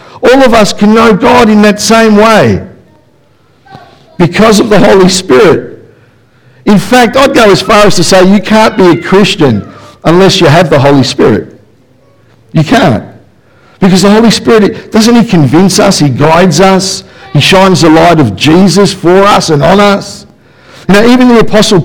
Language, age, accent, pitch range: English, 50-69, Australian, 155-215 Hz